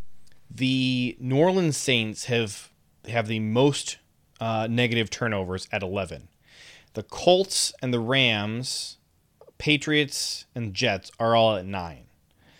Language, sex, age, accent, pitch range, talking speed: English, male, 30-49, American, 110-140 Hz, 120 wpm